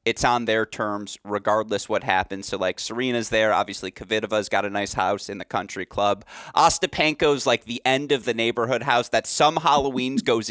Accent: American